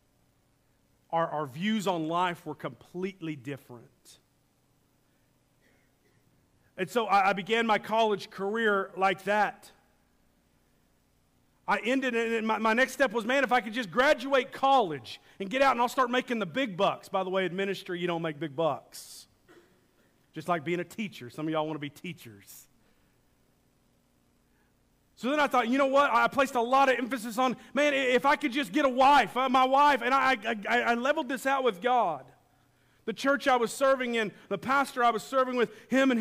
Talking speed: 190 wpm